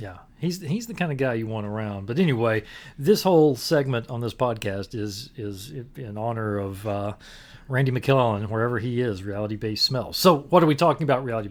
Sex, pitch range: male, 105-135 Hz